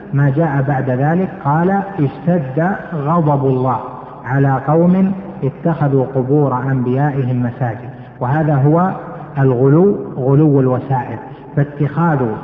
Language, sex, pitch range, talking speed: Arabic, male, 130-160 Hz, 95 wpm